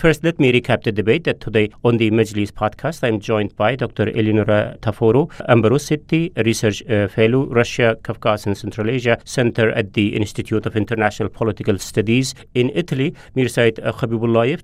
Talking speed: 170 wpm